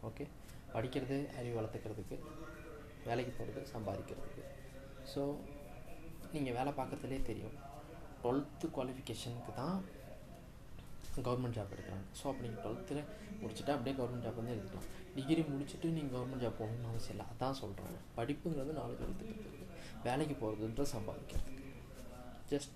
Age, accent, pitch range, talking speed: 20-39, native, 115-145 Hz, 110 wpm